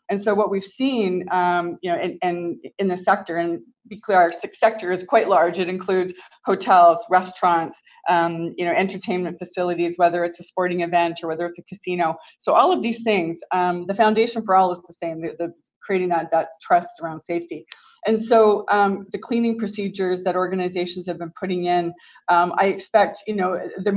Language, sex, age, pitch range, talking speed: English, female, 20-39, 170-195 Hz, 200 wpm